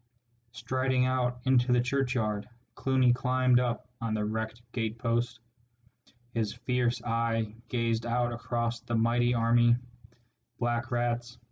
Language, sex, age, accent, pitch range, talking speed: English, male, 10-29, American, 115-125 Hz, 120 wpm